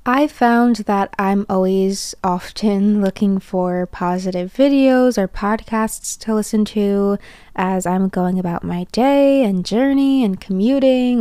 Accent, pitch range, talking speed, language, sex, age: American, 185-220 Hz, 135 wpm, English, female, 20-39